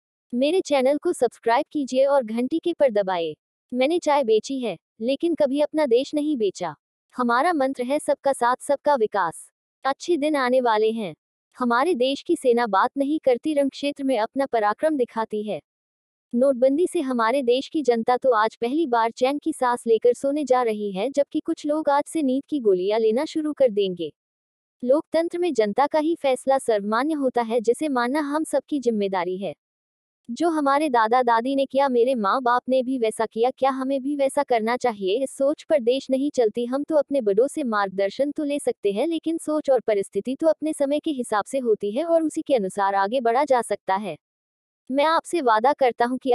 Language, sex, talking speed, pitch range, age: Hindi, female, 200 wpm, 230-285 Hz, 20-39